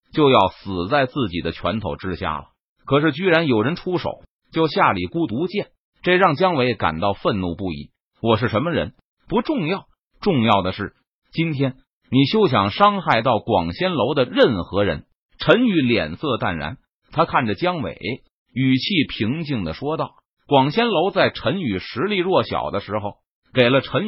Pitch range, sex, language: 110-165 Hz, male, Chinese